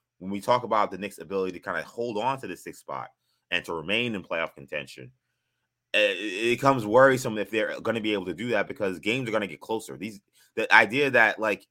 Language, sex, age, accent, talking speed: English, male, 20-39, American, 235 wpm